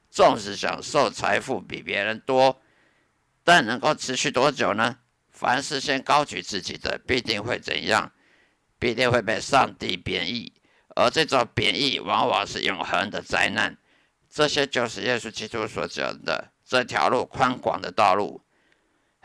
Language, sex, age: Chinese, male, 50-69